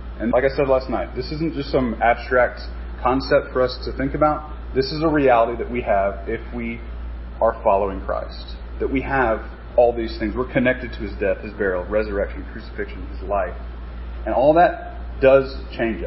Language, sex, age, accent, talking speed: English, male, 30-49, American, 190 wpm